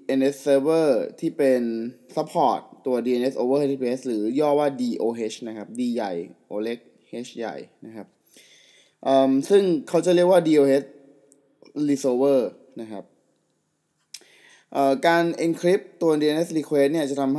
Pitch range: 125-155 Hz